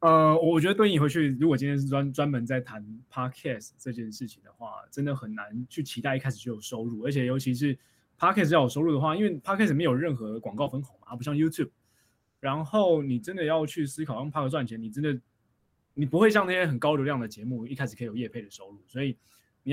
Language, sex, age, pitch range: Chinese, male, 20-39, 120-150 Hz